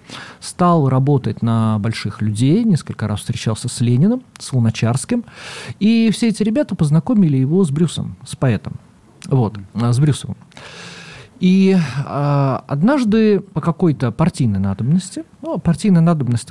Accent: native